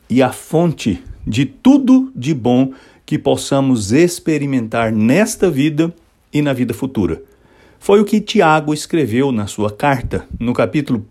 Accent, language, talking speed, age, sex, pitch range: Brazilian, English, 140 wpm, 60-79, male, 125-170 Hz